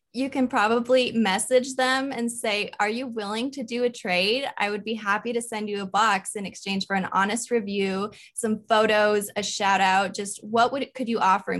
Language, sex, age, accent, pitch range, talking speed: English, female, 20-39, American, 195-245 Hz, 205 wpm